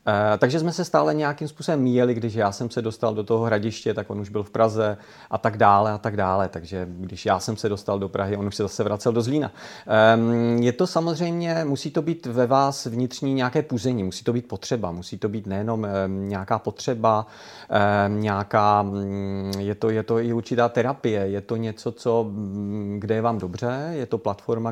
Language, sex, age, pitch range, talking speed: Czech, male, 40-59, 105-125 Hz, 200 wpm